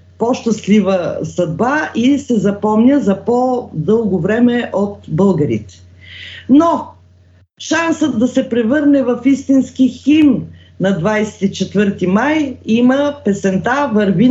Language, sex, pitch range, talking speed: Bulgarian, female, 190-255 Hz, 100 wpm